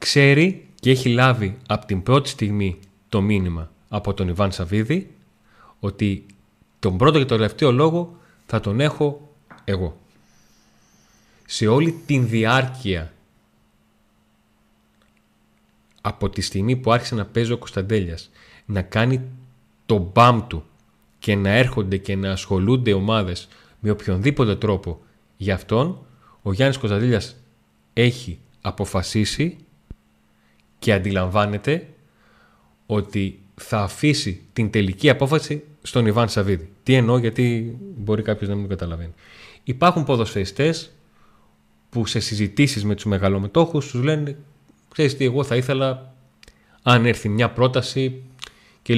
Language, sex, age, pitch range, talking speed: Greek, male, 30-49, 100-130 Hz, 125 wpm